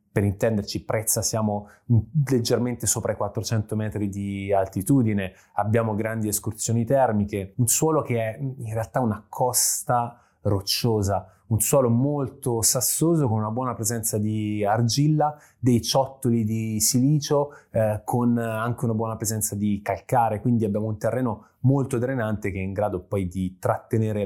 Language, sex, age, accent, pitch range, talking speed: Italian, male, 20-39, native, 100-120 Hz, 145 wpm